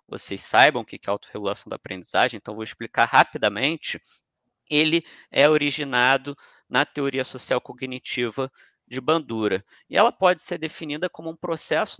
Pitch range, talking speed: 140-175 Hz, 145 wpm